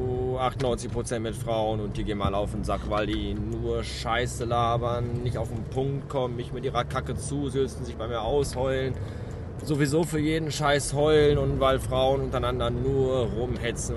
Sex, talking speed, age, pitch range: male, 170 wpm, 20-39, 115-140 Hz